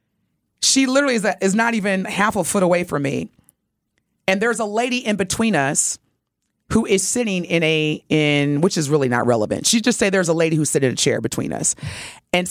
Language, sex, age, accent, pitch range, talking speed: English, female, 30-49, American, 165-245 Hz, 210 wpm